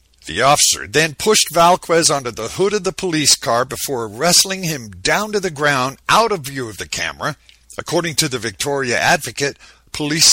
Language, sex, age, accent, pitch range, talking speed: English, male, 50-69, American, 120-165 Hz, 180 wpm